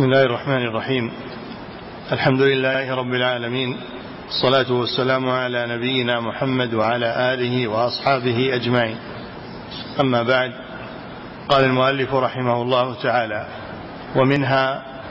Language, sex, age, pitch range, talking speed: Arabic, male, 50-69, 125-135 Hz, 100 wpm